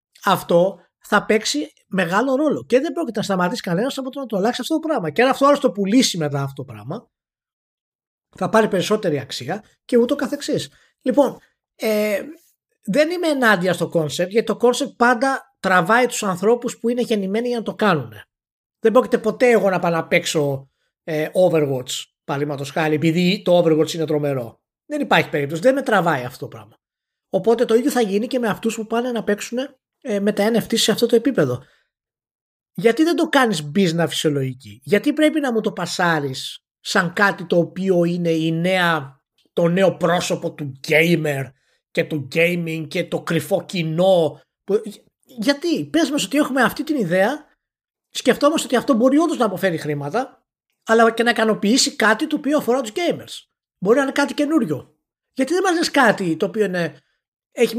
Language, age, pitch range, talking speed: Greek, 20-39, 165-250 Hz, 180 wpm